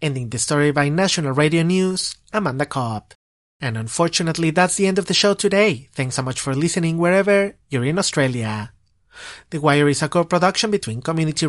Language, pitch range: English, 130-180 Hz